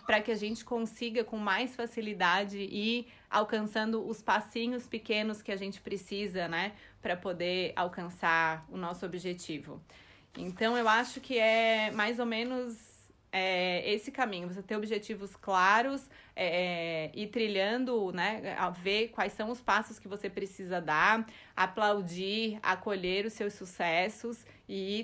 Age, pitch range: 30-49, 195-245 Hz